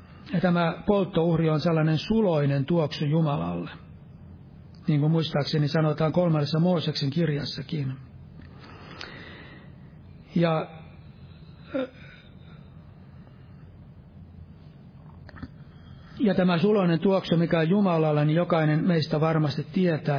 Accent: native